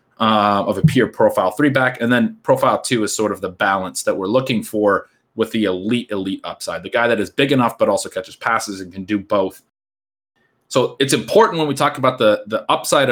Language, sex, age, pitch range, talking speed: English, male, 30-49, 105-130 Hz, 225 wpm